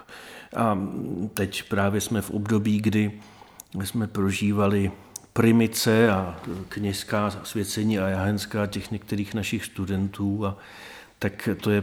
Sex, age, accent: male, 40-59, native